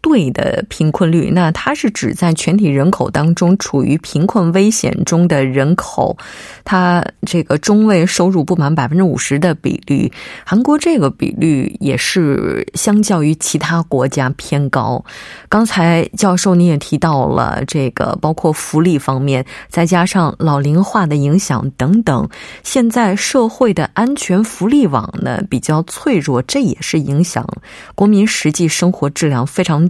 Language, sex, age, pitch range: Korean, female, 20-39, 155-220 Hz